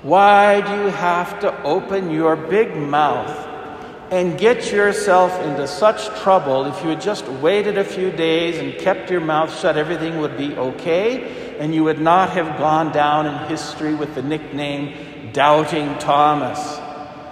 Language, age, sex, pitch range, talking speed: English, 60-79, male, 130-160 Hz, 160 wpm